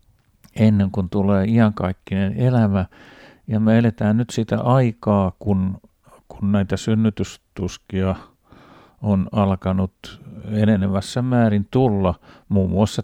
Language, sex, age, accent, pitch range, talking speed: Finnish, male, 50-69, native, 100-120 Hz, 100 wpm